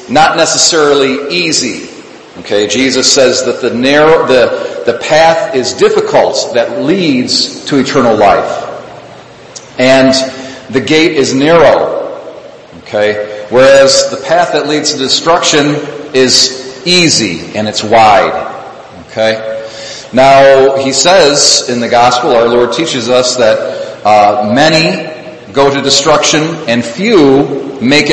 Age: 40-59